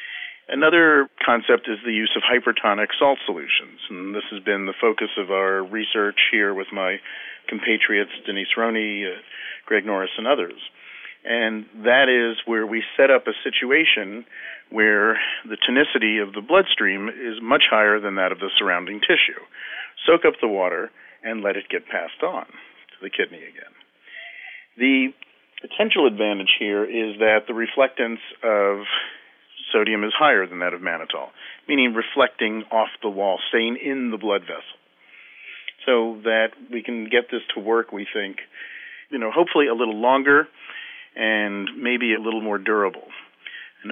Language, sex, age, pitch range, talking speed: English, male, 40-59, 105-125 Hz, 155 wpm